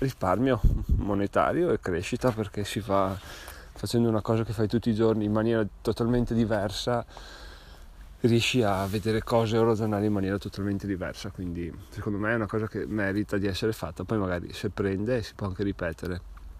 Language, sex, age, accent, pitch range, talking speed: Italian, male, 30-49, native, 95-115 Hz, 170 wpm